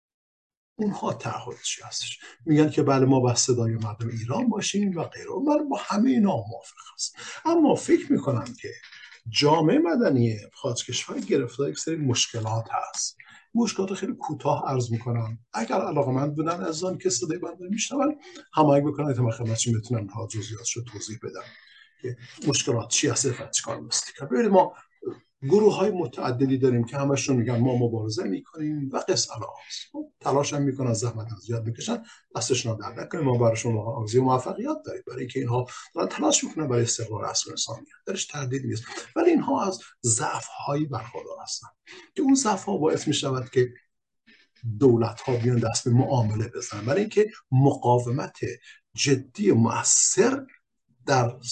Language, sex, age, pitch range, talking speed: Persian, male, 50-69, 120-185 Hz, 155 wpm